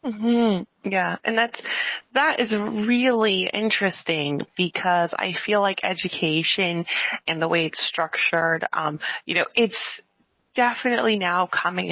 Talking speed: 135 wpm